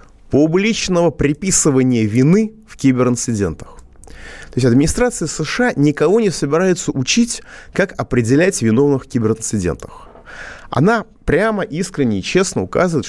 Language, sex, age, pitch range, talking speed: Russian, male, 30-49, 110-165 Hz, 110 wpm